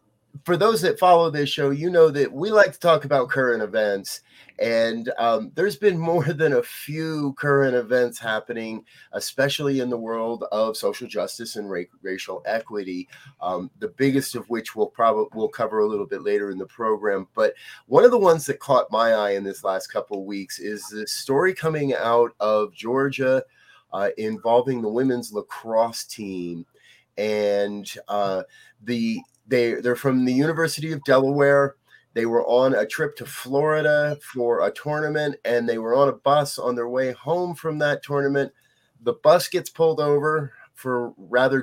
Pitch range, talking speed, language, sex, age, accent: 115-150 Hz, 175 wpm, English, male, 30-49, American